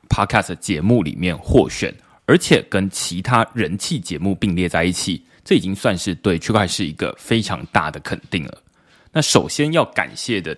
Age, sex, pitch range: 20-39, male, 90-120 Hz